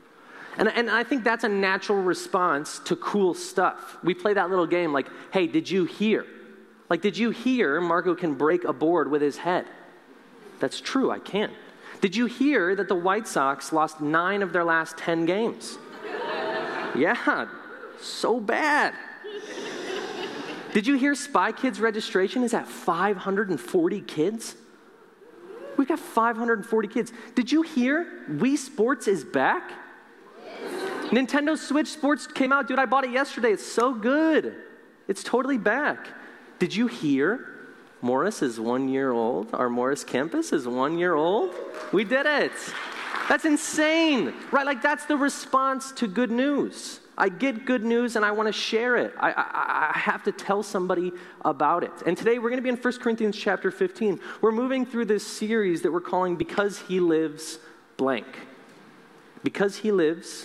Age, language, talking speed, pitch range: 30-49, English, 165 wpm, 180-285 Hz